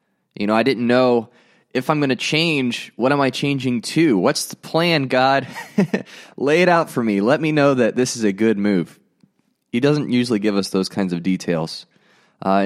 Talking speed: 205 wpm